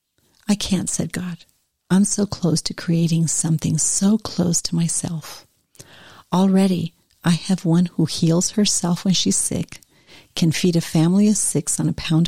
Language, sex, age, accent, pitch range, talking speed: English, female, 50-69, American, 155-180 Hz, 160 wpm